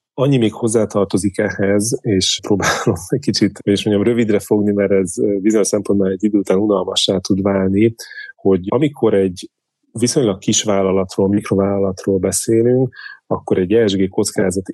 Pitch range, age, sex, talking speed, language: 95-110 Hz, 30-49, male, 140 wpm, Hungarian